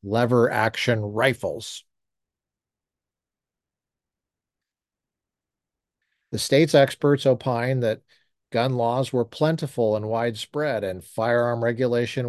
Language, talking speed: English, 80 wpm